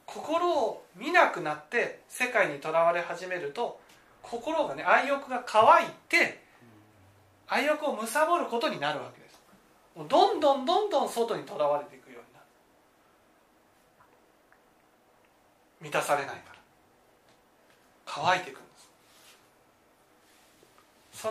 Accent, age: native, 40-59